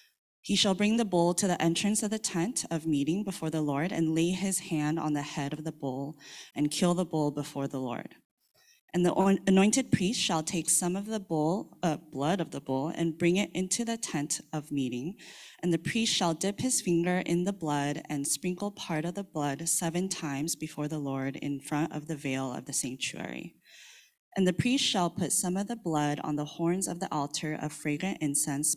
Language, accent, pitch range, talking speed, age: English, American, 145-180 Hz, 215 wpm, 20-39